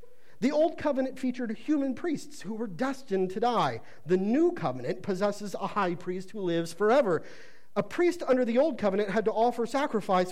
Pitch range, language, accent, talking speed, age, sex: 155-245 Hz, English, American, 180 wpm, 50-69, male